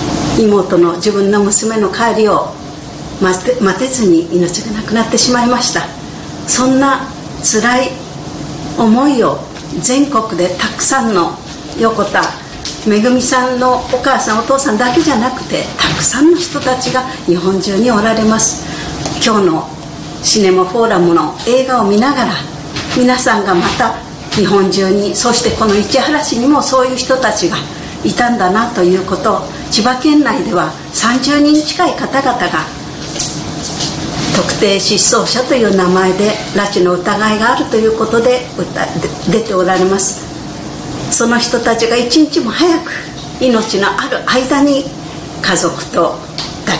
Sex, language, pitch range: female, Japanese, 185-250 Hz